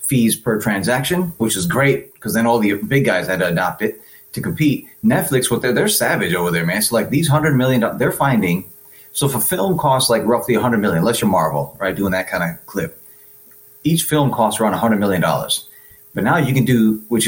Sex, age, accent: male, 30-49, American